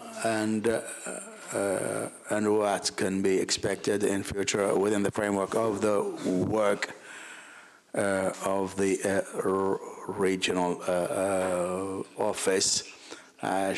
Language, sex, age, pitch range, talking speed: English, male, 60-79, 95-115 Hz, 115 wpm